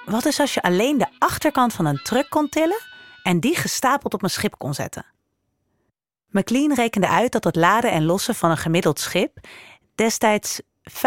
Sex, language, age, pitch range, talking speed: female, Dutch, 30-49, 165-230 Hz, 180 wpm